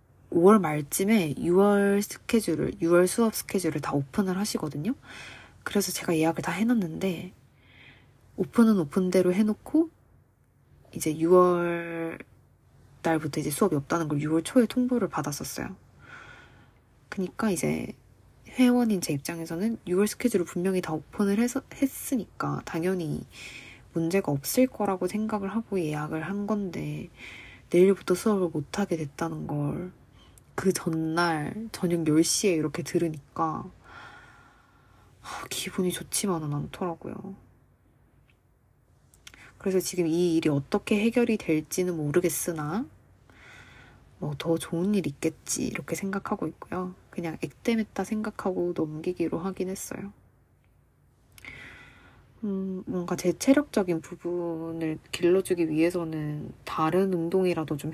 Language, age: Korean, 20-39